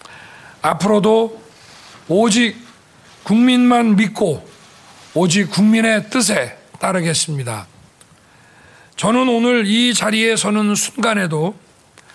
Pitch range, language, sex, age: 190-240 Hz, Korean, male, 40-59